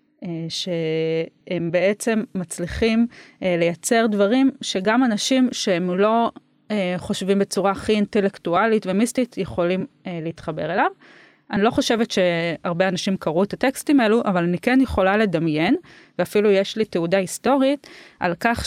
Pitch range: 170-230 Hz